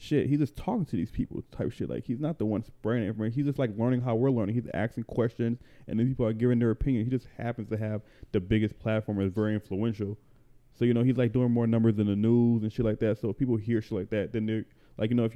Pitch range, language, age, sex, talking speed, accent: 105-130 Hz, English, 20-39, male, 285 wpm, American